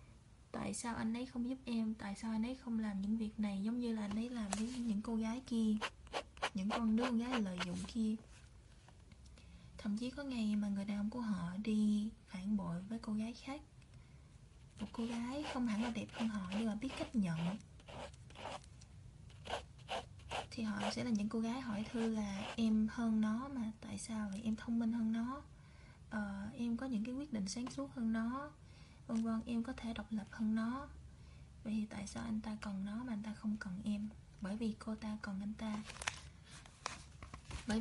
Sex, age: female, 20-39